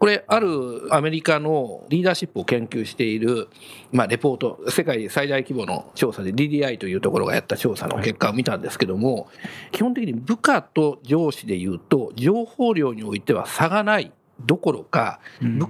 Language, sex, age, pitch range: Japanese, male, 50-69, 130-215 Hz